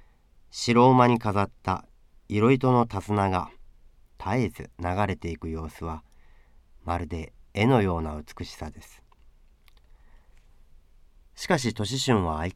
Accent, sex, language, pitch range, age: native, male, Japanese, 75-110 Hz, 40-59